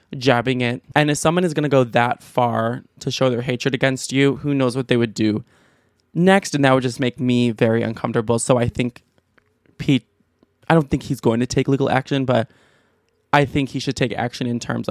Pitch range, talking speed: 120-145 Hz, 215 wpm